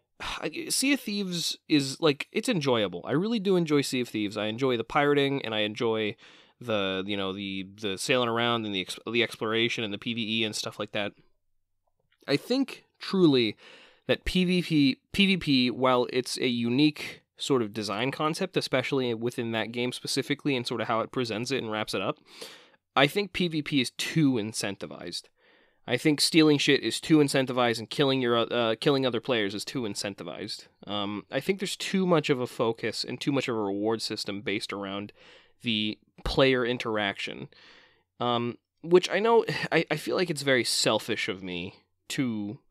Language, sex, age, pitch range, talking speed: English, male, 20-39, 110-145 Hz, 180 wpm